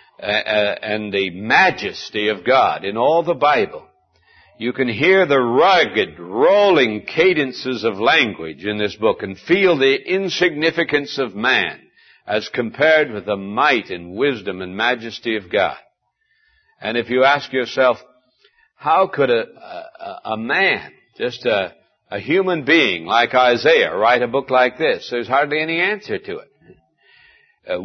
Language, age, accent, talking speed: English, 60-79, American, 150 wpm